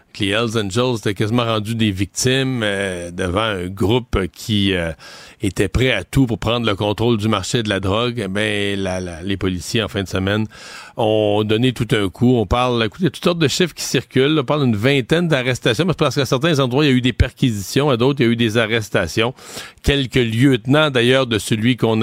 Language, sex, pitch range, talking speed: French, male, 105-130 Hz, 225 wpm